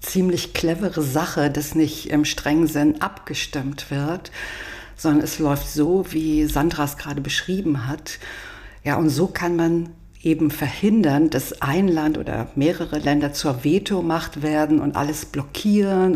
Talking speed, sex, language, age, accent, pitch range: 145 wpm, female, German, 50-69, German, 145-165 Hz